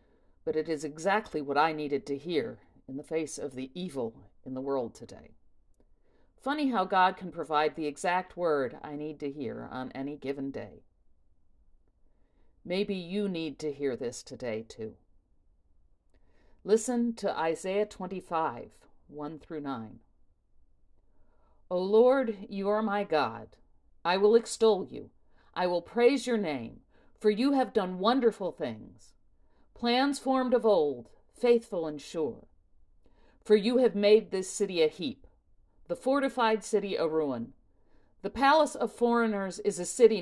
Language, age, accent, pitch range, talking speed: English, 50-69, American, 140-220 Hz, 145 wpm